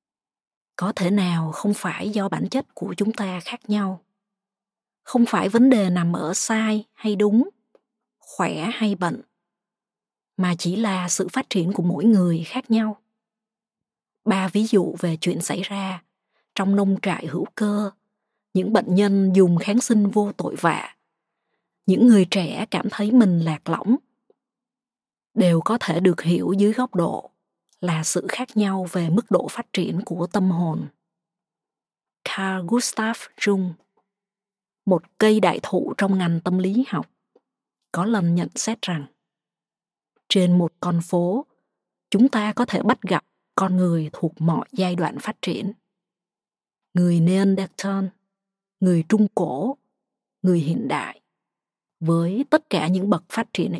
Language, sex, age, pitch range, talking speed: Vietnamese, female, 20-39, 180-220 Hz, 150 wpm